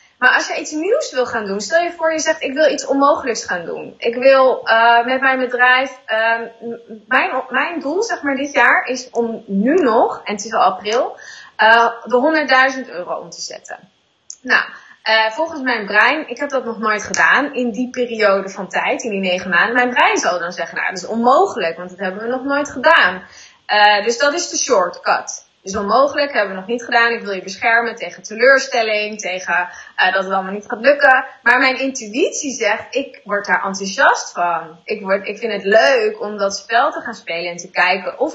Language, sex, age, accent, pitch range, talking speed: Dutch, female, 20-39, Dutch, 210-270 Hz, 215 wpm